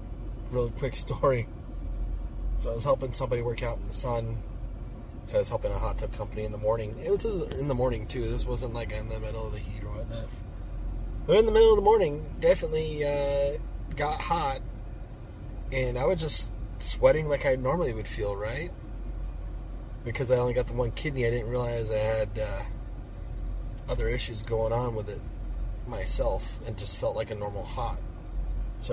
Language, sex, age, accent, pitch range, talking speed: English, male, 30-49, American, 90-125 Hz, 190 wpm